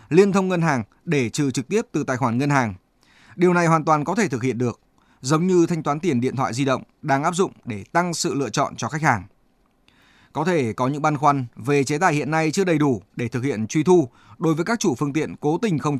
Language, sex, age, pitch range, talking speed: Vietnamese, male, 20-39, 130-175 Hz, 265 wpm